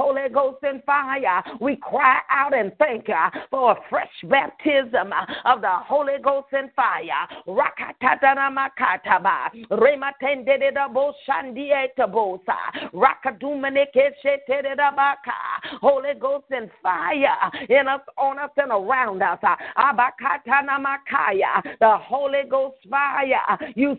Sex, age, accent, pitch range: female, 40-59, American, 260-280 Hz